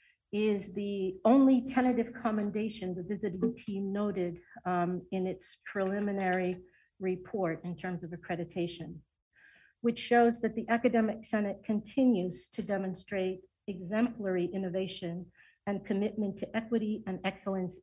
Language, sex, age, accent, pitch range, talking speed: English, female, 50-69, American, 185-230 Hz, 120 wpm